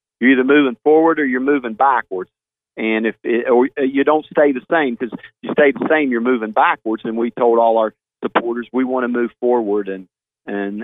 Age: 50-69